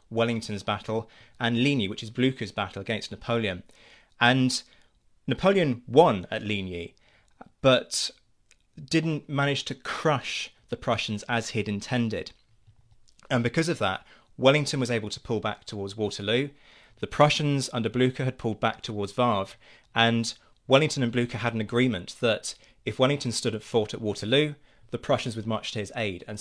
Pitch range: 110-130 Hz